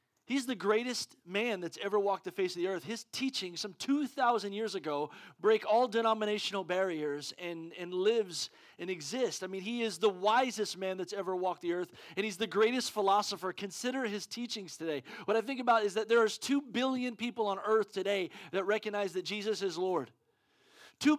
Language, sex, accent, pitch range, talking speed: English, male, American, 200-255 Hz, 195 wpm